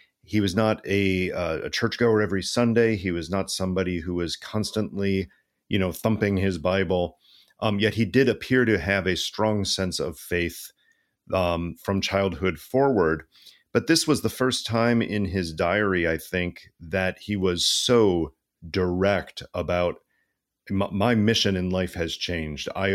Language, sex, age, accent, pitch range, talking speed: English, male, 40-59, American, 90-110 Hz, 160 wpm